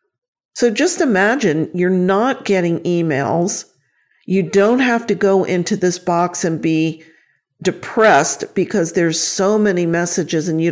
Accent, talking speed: American, 140 wpm